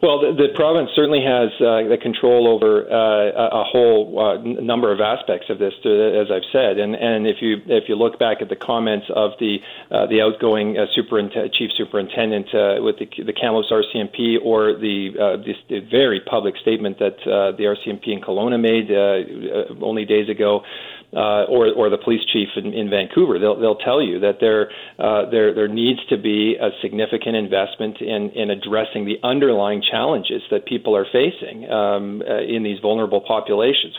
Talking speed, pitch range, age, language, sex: 190 wpm, 105-125 Hz, 50-69, English, male